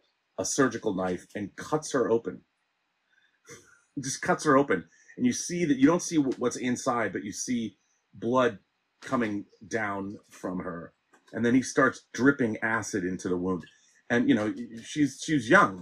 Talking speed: 165 wpm